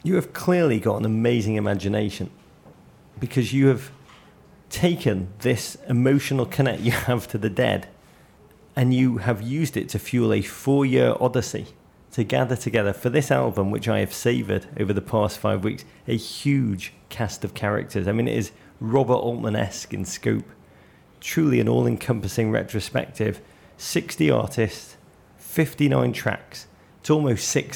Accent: British